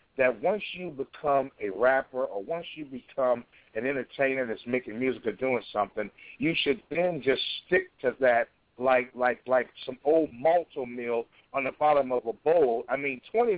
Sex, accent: male, American